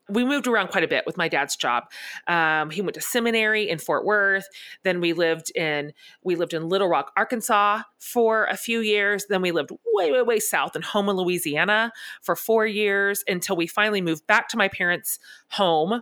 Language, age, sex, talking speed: English, 30-49, female, 205 wpm